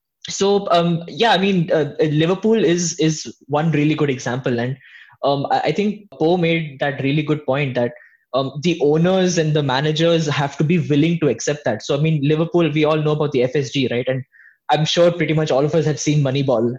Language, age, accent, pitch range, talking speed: English, 10-29, Indian, 140-165 Hz, 210 wpm